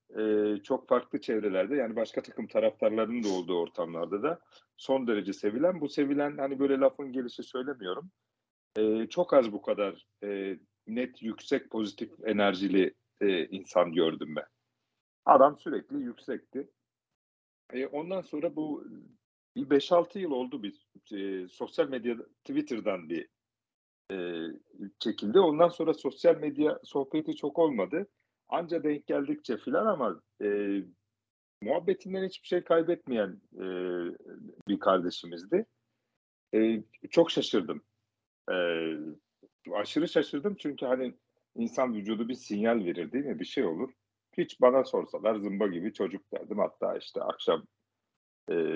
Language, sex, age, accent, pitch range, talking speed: Turkish, male, 50-69, native, 100-155 Hz, 125 wpm